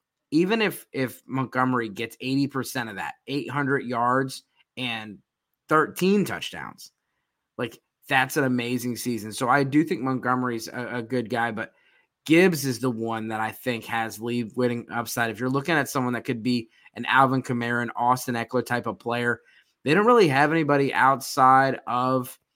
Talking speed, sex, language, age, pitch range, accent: 170 wpm, male, English, 20-39, 120-140 Hz, American